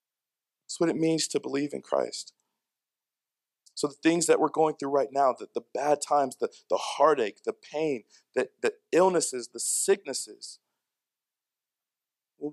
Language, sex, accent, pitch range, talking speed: English, male, American, 140-170 Hz, 155 wpm